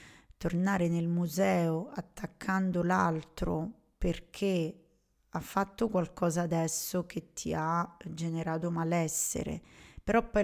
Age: 20-39